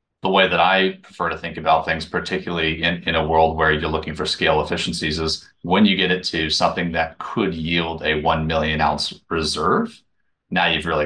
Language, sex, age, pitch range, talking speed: English, male, 30-49, 80-90 Hz, 205 wpm